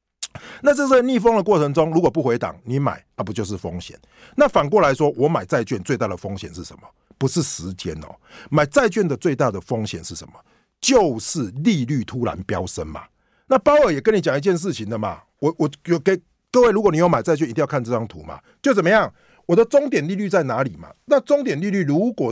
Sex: male